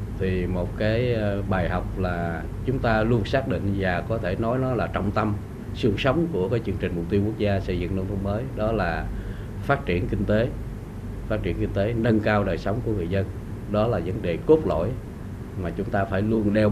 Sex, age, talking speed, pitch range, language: male, 20-39, 225 wpm, 95-110 Hz, Vietnamese